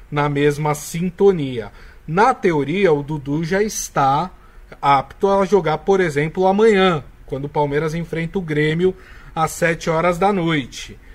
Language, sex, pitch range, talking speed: Portuguese, male, 140-185 Hz, 140 wpm